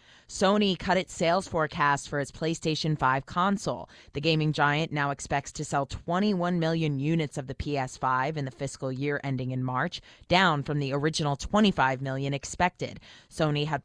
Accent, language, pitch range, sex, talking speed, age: American, English, 135-160 Hz, female, 170 wpm, 20-39